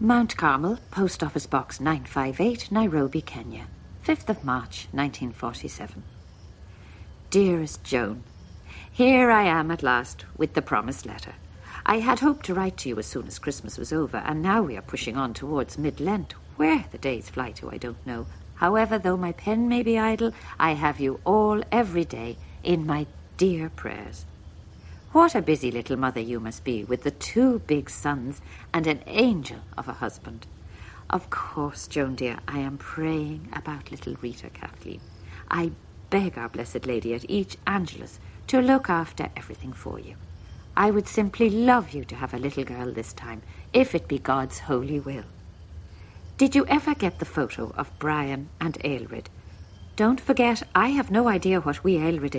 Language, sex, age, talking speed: English, female, 50-69, 170 wpm